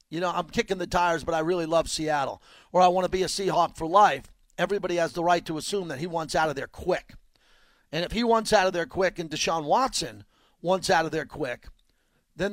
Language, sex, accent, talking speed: English, male, American, 240 wpm